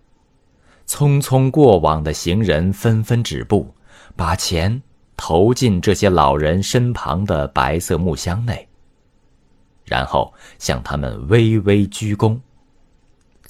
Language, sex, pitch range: Chinese, male, 75-115 Hz